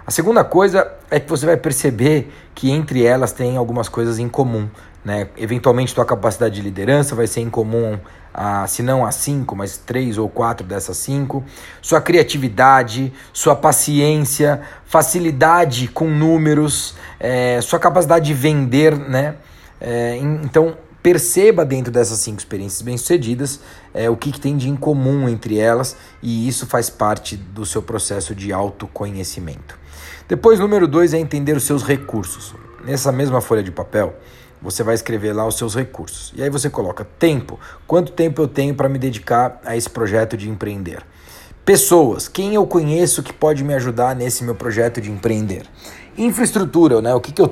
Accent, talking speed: Brazilian, 165 wpm